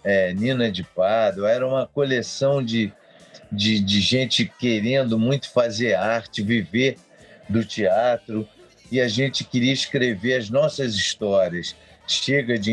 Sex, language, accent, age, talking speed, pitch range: male, Portuguese, Brazilian, 50-69, 130 wpm, 100-130 Hz